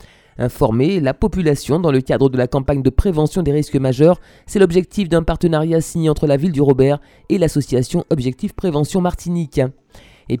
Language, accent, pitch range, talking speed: French, French, 150-190 Hz, 175 wpm